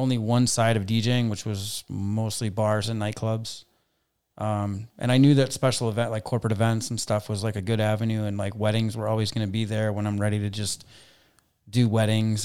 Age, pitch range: 30-49, 105-120 Hz